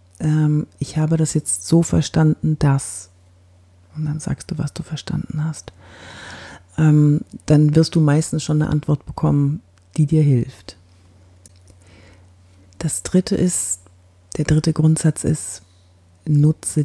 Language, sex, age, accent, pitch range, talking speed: German, female, 40-59, German, 95-155 Hz, 120 wpm